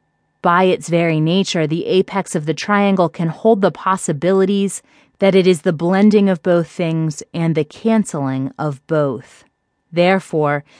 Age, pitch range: 30-49, 160-205 Hz